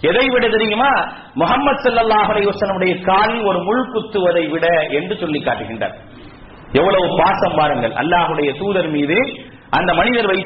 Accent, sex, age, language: Indian, male, 40-59, English